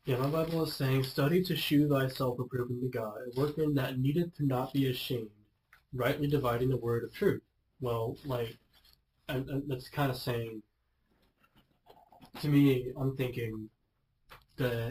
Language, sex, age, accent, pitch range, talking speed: English, male, 20-39, American, 115-135 Hz, 150 wpm